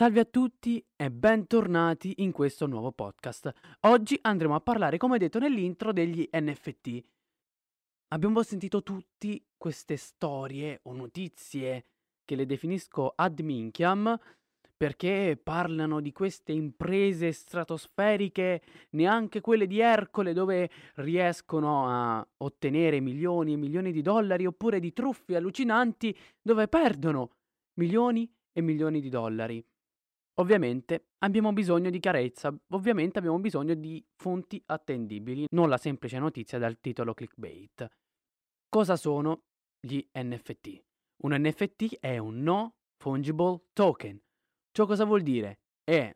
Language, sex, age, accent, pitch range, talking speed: Italian, male, 20-39, native, 135-195 Hz, 120 wpm